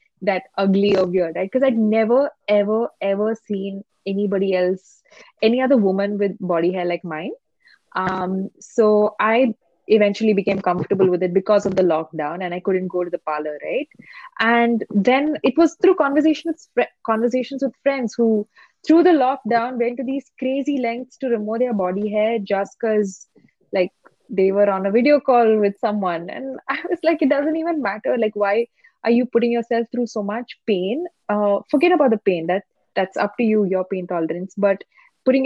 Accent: Indian